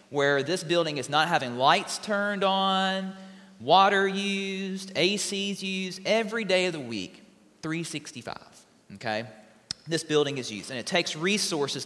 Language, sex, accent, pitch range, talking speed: English, male, American, 150-200 Hz, 140 wpm